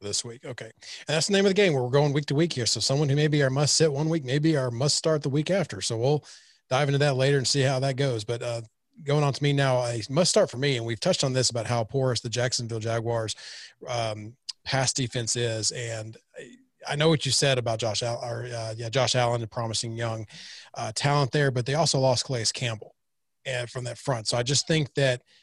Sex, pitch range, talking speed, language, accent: male, 120-145 Hz, 250 wpm, English, American